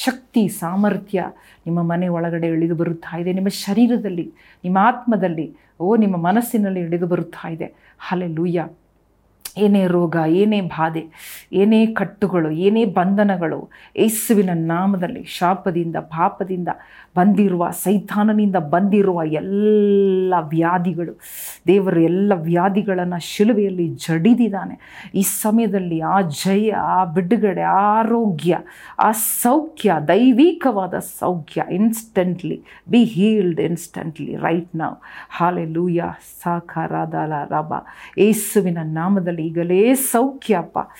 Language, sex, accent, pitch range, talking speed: Kannada, female, native, 170-210 Hz, 100 wpm